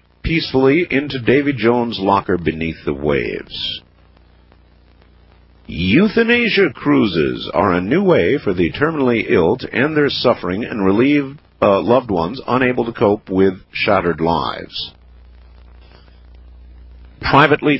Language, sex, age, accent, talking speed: English, male, 50-69, American, 115 wpm